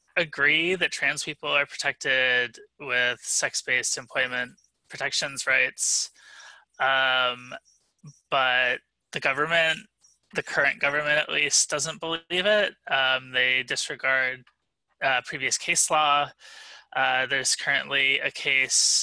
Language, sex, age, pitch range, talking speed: English, male, 20-39, 135-165 Hz, 110 wpm